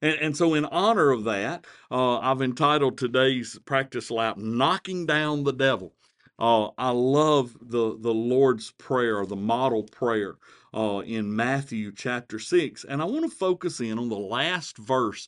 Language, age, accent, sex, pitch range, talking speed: English, 50-69, American, male, 115-145 Hz, 160 wpm